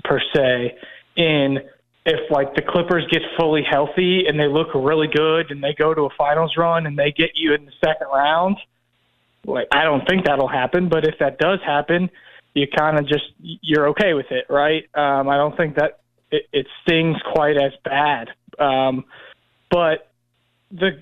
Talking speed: 185 wpm